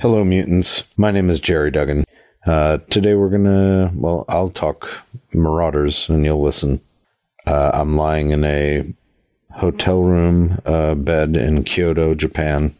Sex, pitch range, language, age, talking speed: male, 75-95 Hz, English, 50-69, 145 wpm